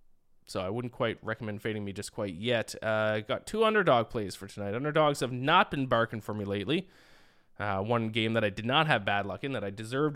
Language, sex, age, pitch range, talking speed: English, male, 20-39, 115-150 Hz, 230 wpm